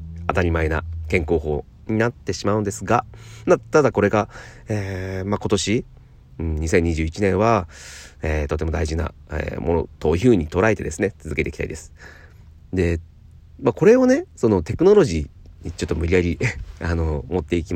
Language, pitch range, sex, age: Japanese, 80-115 Hz, male, 40-59